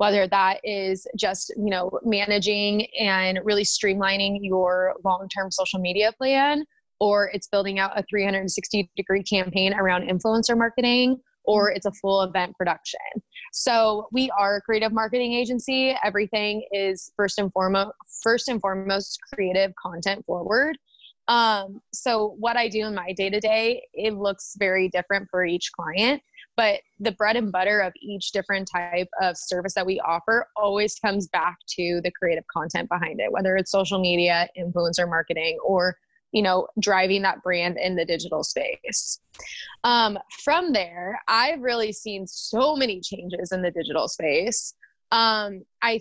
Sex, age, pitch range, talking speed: female, 20-39, 185-220 Hz, 155 wpm